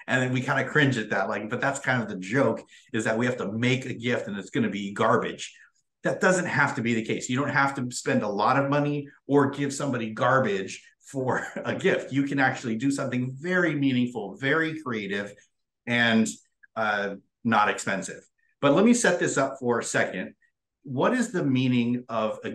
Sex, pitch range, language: male, 115-145 Hz, English